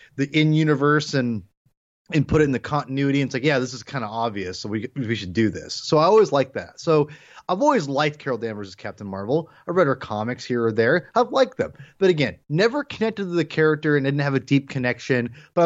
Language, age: English, 30-49